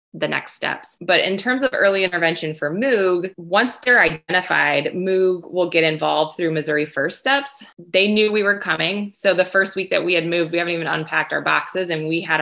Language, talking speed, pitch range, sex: English, 210 wpm, 155-185 Hz, female